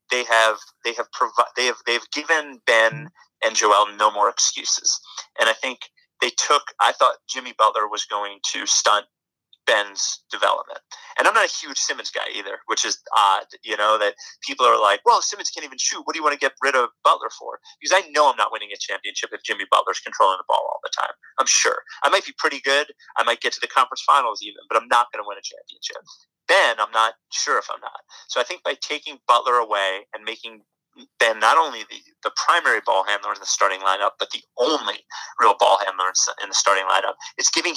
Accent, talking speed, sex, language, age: American, 225 wpm, male, English, 30-49